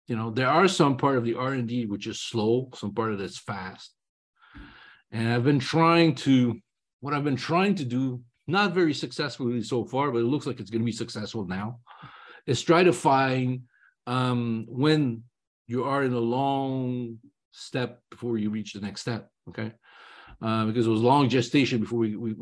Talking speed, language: 195 wpm, English